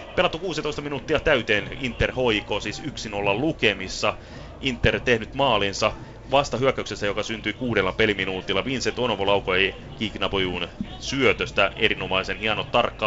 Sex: male